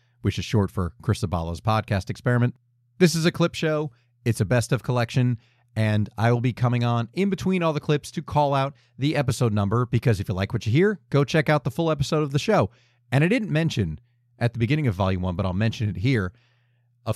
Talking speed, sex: 235 wpm, male